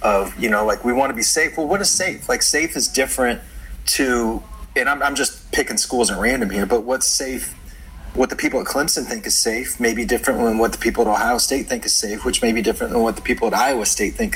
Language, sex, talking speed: English, male, 265 wpm